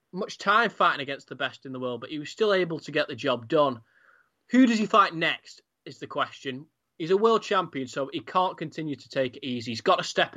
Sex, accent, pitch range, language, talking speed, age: male, British, 135-175 Hz, English, 250 wpm, 20-39